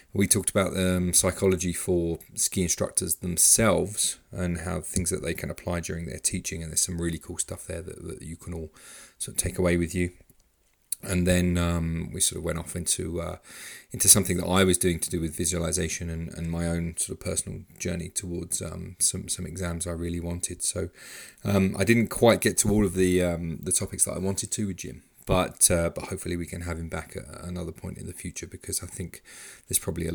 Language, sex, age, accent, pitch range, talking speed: English, male, 30-49, British, 85-95 Hz, 225 wpm